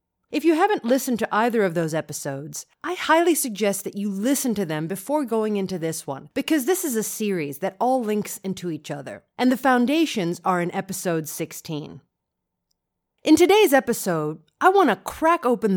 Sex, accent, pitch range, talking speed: female, American, 175-275 Hz, 185 wpm